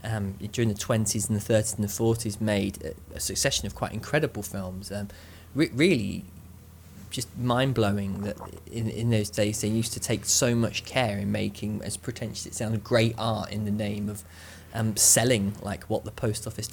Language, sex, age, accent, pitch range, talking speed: English, male, 20-39, British, 100-120 Hz, 195 wpm